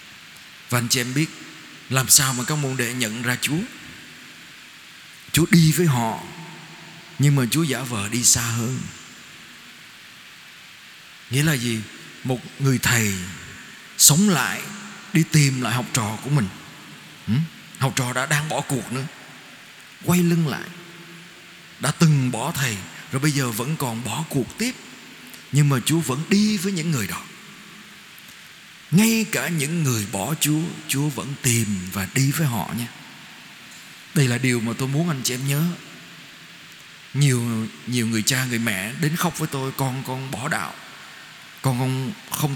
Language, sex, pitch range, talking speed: Vietnamese, male, 120-165 Hz, 160 wpm